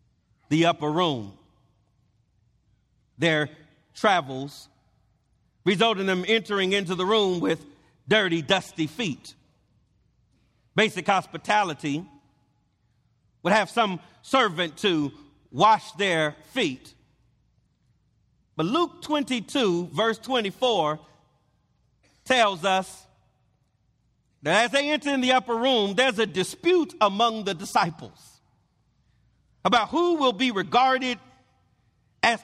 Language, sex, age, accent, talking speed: English, male, 40-59, American, 100 wpm